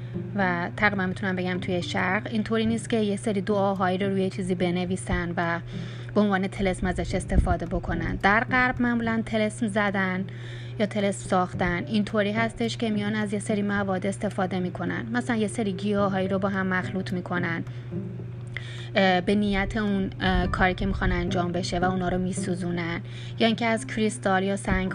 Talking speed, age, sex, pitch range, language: 170 wpm, 30-49, female, 175-205 Hz, Persian